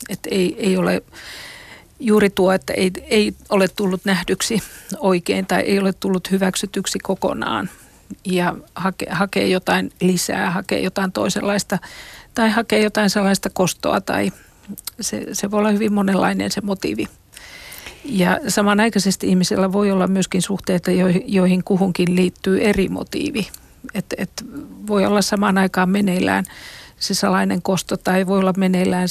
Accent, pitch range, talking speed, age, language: native, 180-205 Hz, 140 wpm, 50-69, Finnish